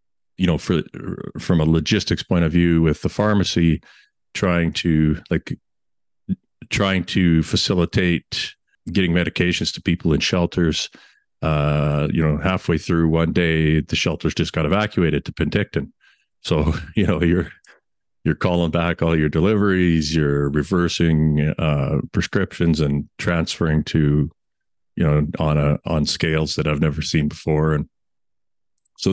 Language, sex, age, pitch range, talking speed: English, male, 40-59, 75-90 Hz, 140 wpm